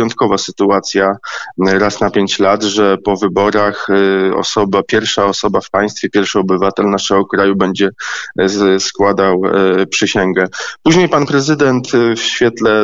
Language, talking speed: Polish, 120 wpm